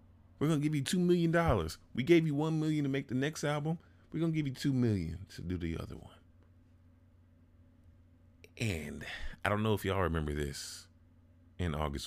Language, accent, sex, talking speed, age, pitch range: English, American, male, 190 wpm, 30-49, 85-95 Hz